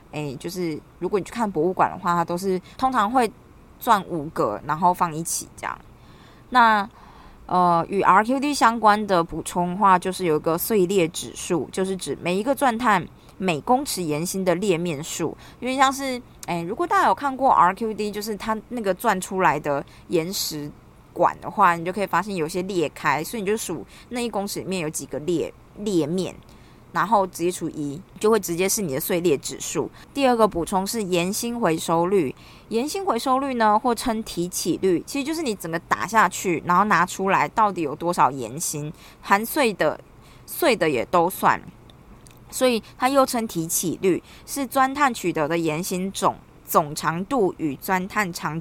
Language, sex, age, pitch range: Chinese, female, 20-39, 170-225 Hz